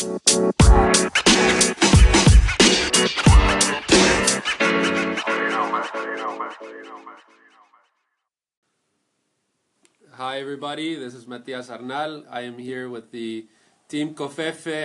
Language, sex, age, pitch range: English, male, 30-49, 115-135 Hz